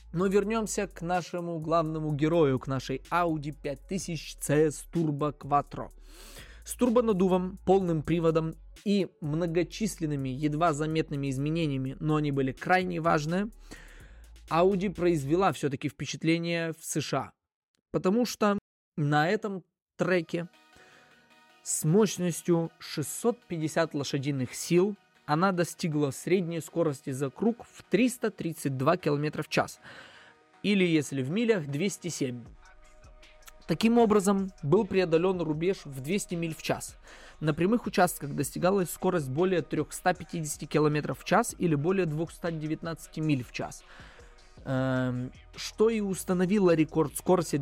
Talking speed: 115 wpm